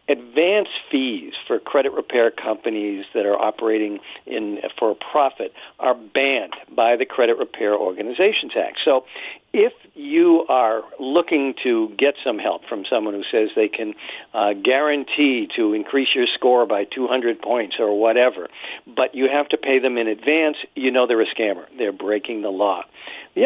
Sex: male